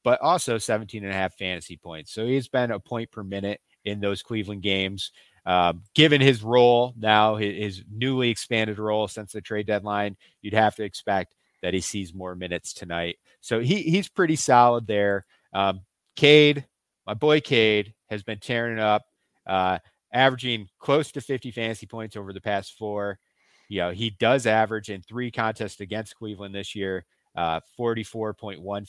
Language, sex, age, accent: English, male, 30-49, American